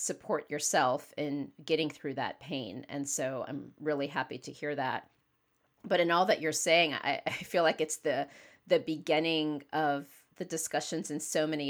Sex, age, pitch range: female, 40-59, 145-165 Hz